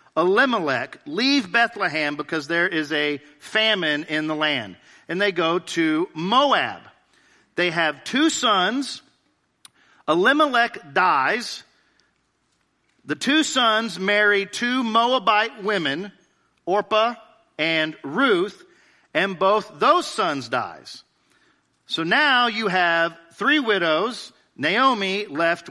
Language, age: English, 50-69